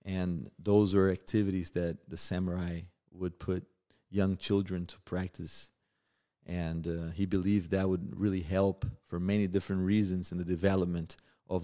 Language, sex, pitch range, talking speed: English, male, 90-100 Hz, 150 wpm